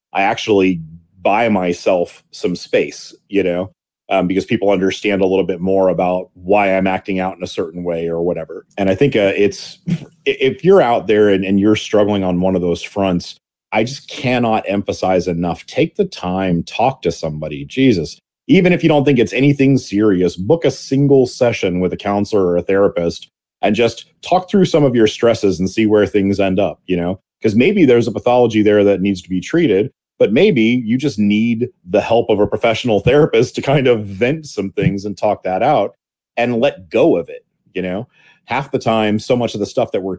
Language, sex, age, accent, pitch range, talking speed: English, male, 30-49, American, 95-125 Hz, 210 wpm